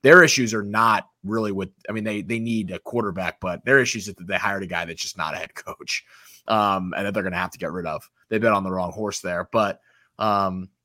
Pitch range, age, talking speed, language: 105-130 Hz, 20-39, 260 wpm, English